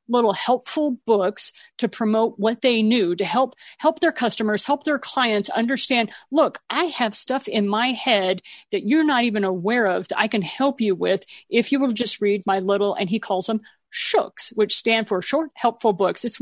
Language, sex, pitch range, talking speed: English, female, 210-265 Hz, 200 wpm